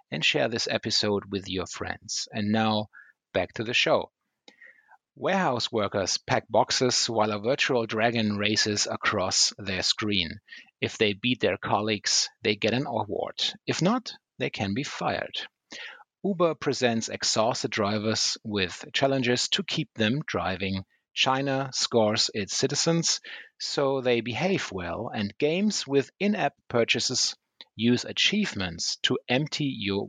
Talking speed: 135 wpm